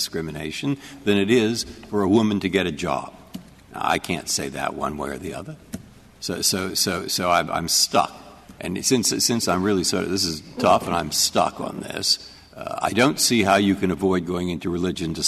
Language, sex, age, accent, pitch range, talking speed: English, male, 60-79, American, 95-120 Hz, 210 wpm